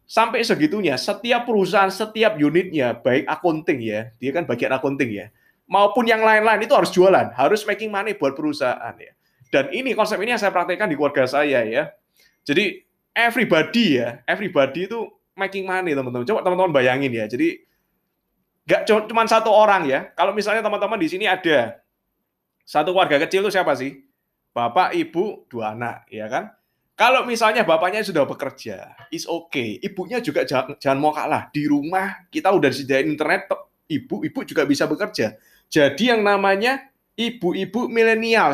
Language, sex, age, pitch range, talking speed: Indonesian, male, 20-39, 160-225 Hz, 160 wpm